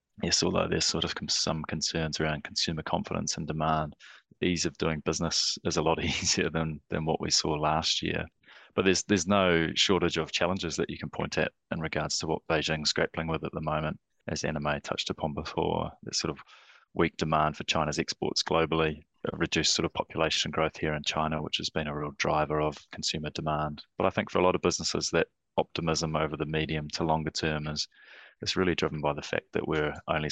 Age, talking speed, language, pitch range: 20-39, 210 wpm, English, 75-80 Hz